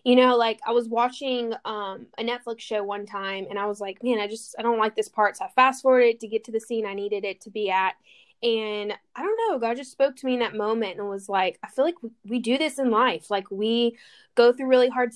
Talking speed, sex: 270 wpm, female